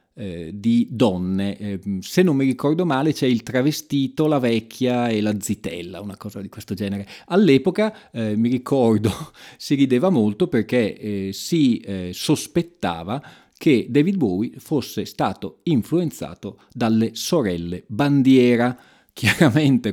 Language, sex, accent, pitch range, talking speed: Italian, male, native, 105-145 Hz, 115 wpm